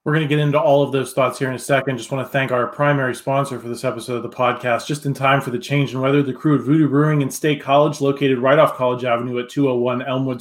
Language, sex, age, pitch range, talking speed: English, male, 30-49, 130-150 Hz, 290 wpm